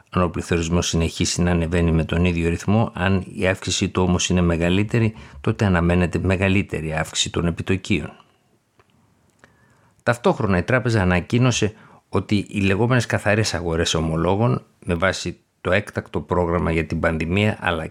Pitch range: 85-110 Hz